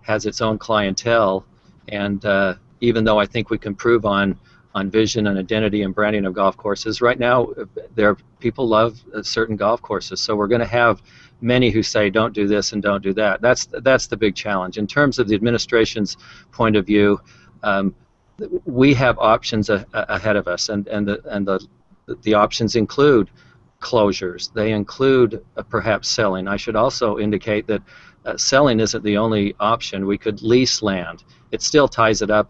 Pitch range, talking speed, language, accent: 100-115 Hz, 190 wpm, English, American